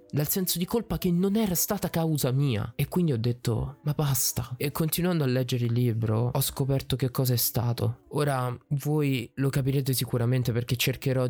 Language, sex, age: Italian, male, 20-39